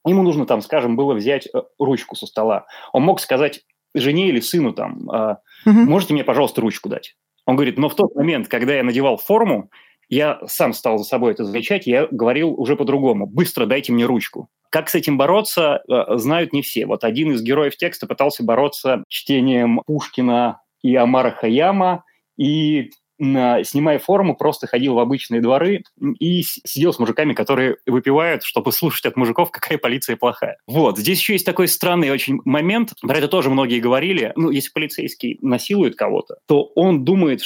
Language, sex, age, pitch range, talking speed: Russian, male, 20-39, 130-185 Hz, 175 wpm